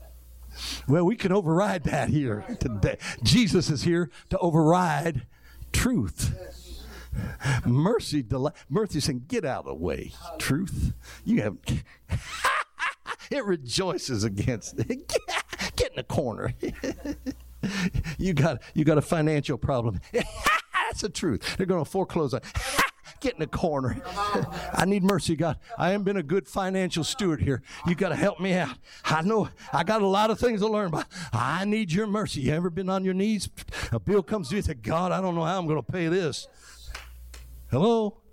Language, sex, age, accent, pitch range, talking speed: English, male, 60-79, American, 155-220 Hz, 170 wpm